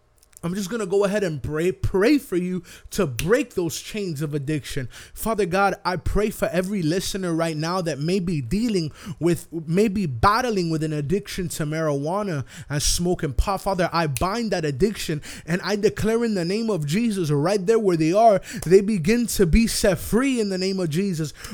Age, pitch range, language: 20-39, 150-195 Hz, English